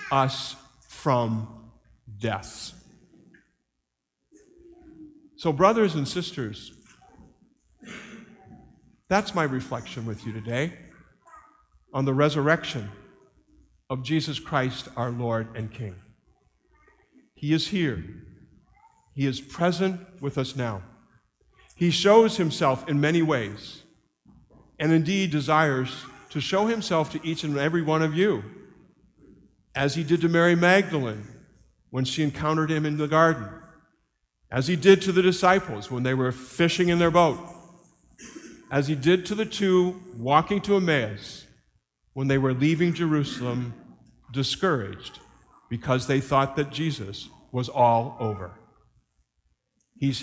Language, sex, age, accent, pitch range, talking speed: English, male, 50-69, American, 120-175 Hz, 120 wpm